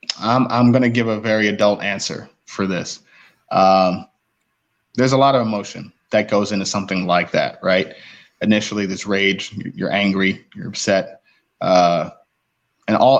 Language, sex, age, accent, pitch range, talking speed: English, male, 20-39, American, 100-115 Hz, 155 wpm